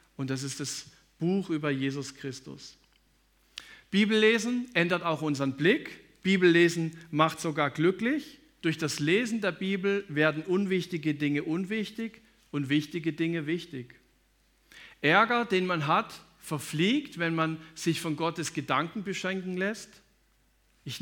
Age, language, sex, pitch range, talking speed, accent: 50-69, German, male, 155-195 Hz, 125 wpm, German